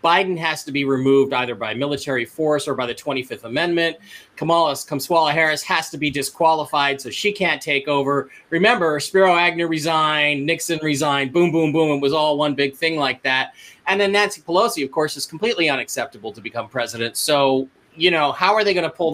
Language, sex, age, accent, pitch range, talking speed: English, male, 30-49, American, 140-175 Hz, 200 wpm